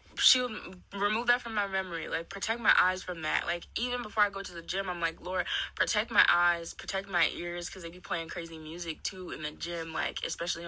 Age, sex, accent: 20-39, female, American